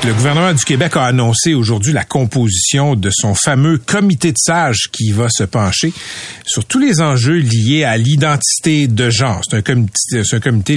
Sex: male